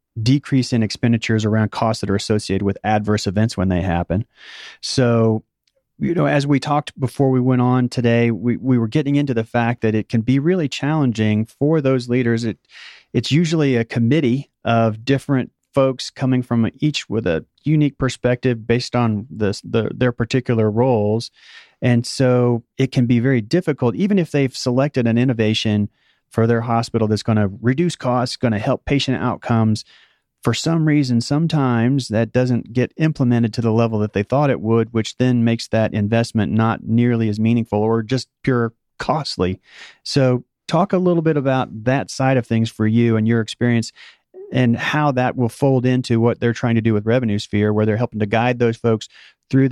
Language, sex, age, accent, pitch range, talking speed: English, male, 30-49, American, 110-130 Hz, 185 wpm